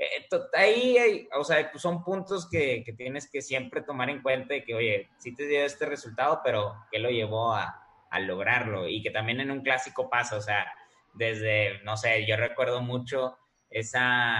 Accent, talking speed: Mexican, 200 wpm